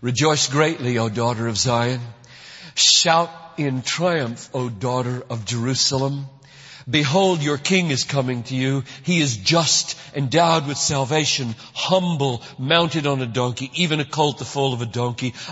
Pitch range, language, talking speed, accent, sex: 140-195 Hz, English, 150 wpm, American, male